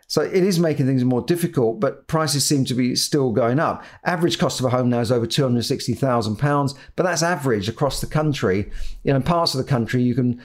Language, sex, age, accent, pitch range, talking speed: English, male, 50-69, British, 115-140 Hz, 220 wpm